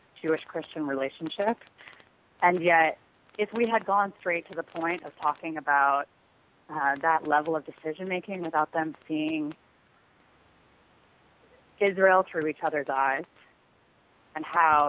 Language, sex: English, female